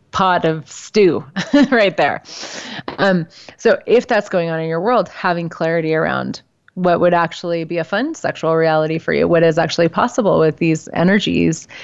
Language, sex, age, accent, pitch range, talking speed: English, female, 30-49, American, 160-190 Hz, 170 wpm